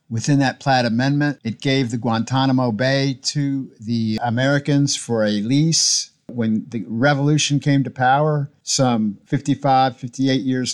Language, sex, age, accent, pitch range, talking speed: English, male, 50-69, American, 120-140 Hz, 140 wpm